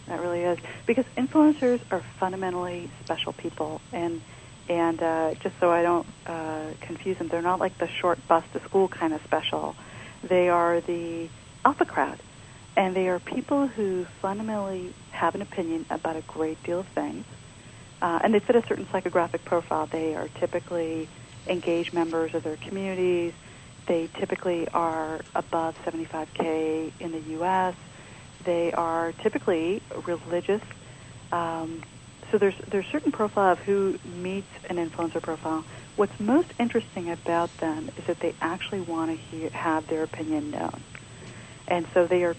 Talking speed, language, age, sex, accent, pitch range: 155 wpm, English, 40-59, female, American, 160-190 Hz